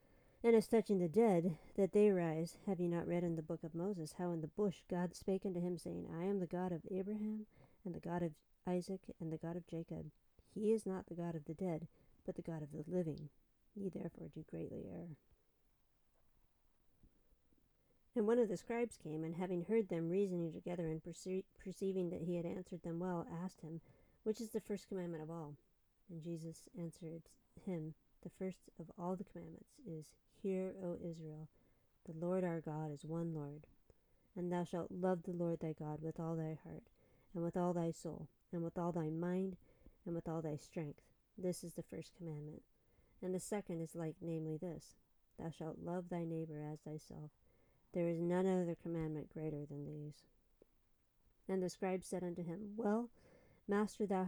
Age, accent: 50-69, American